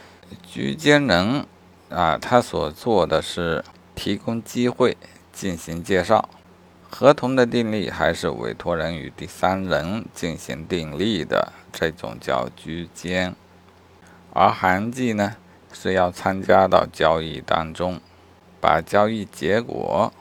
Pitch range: 85-105 Hz